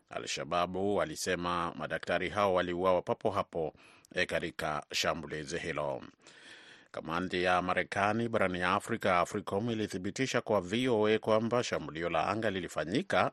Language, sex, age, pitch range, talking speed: Swahili, male, 30-49, 90-105 Hz, 115 wpm